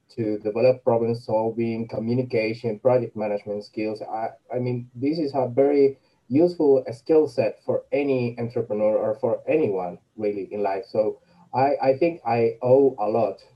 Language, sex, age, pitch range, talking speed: English, male, 20-39, 115-140 Hz, 160 wpm